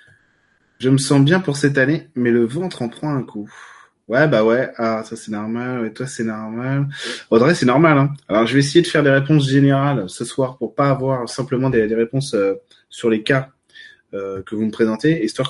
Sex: male